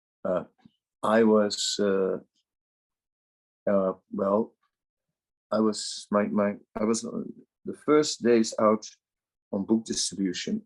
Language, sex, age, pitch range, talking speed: English, male, 50-69, 95-115 Hz, 105 wpm